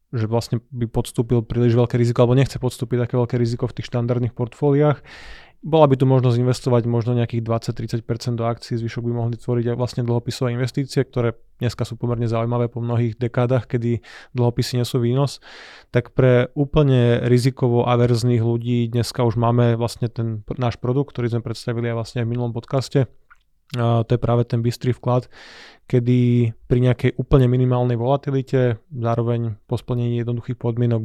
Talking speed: 165 wpm